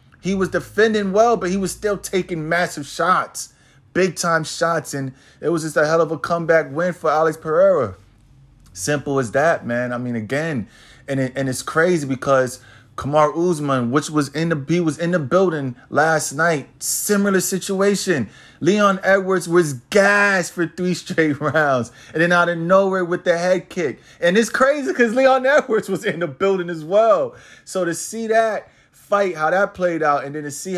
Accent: American